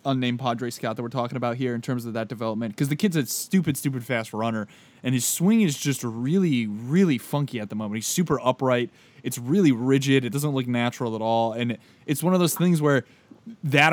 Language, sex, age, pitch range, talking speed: English, male, 20-39, 110-135 Hz, 225 wpm